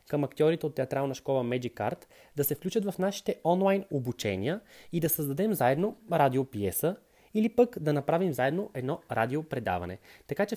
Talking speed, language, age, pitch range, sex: 160 wpm, Bulgarian, 20-39, 135-185 Hz, male